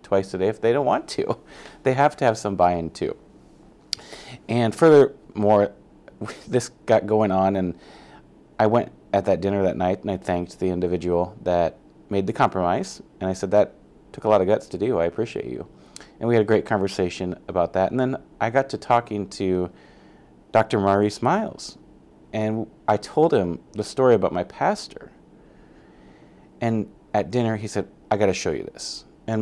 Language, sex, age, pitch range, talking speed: English, male, 30-49, 95-110 Hz, 185 wpm